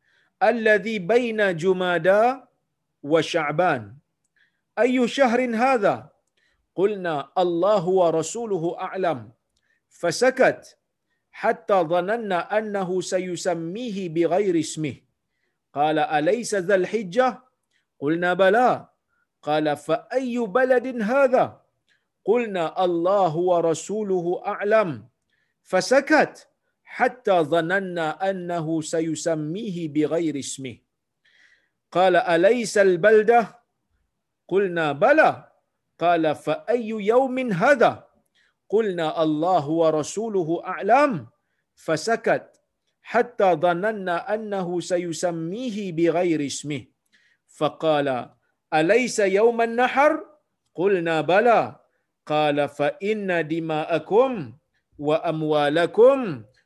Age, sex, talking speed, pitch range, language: 50-69, male, 65 wpm, 160-220 Hz, Malayalam